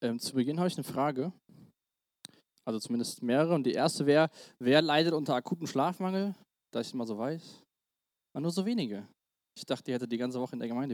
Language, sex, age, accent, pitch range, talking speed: German, male, 20-39, German, 140-195 Hz, 210 wpm